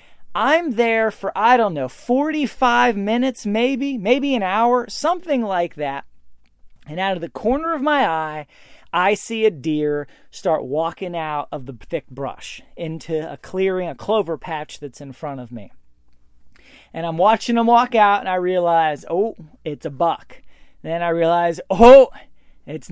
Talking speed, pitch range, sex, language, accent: 165 wpm, 165-250 Hz, male, English, American